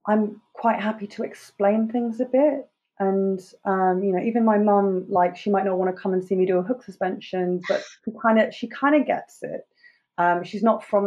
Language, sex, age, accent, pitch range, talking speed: English, female, 20-39, British, 185-225 Hz, 220 wpm